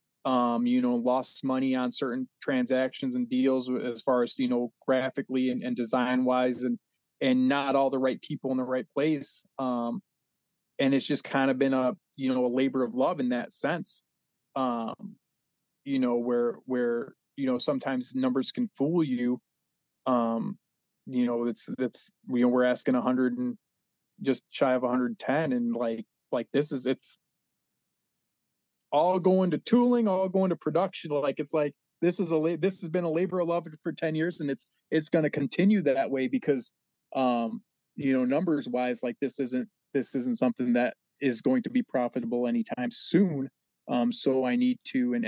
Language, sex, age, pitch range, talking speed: English, male, 20-39, 125-160 Hz, 185 wpm